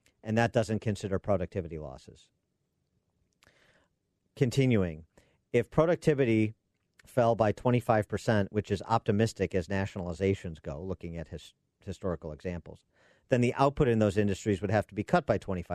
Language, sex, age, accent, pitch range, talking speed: English, male, 50-69, American, 95-115 Hz, 135 wpm